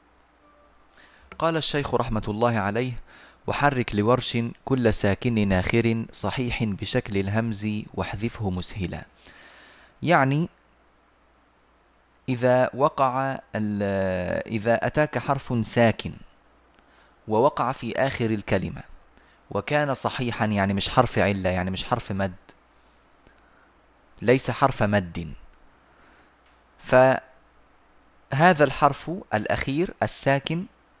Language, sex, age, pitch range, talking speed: Arabic, male, 30-49, 105-135 Hz, 85 wpm